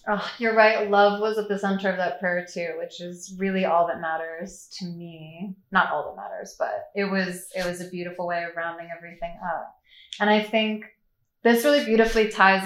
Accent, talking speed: American, 205 wpm